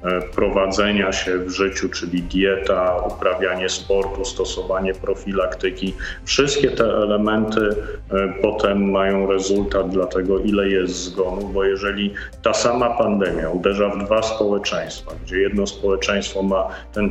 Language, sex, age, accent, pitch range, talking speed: Polish, male, 40-59, native, 95-100 Hz, 125 wpm